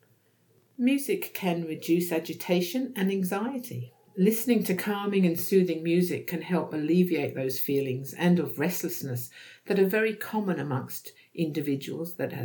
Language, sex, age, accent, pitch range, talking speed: English, female, 50-69, British, 155-200 Hz, 130 wpm